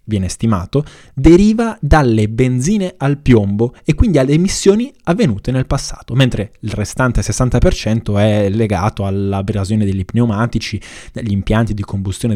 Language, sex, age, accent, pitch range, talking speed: Italian, male, 20-39, native, 105-130 Hz, 130 wpm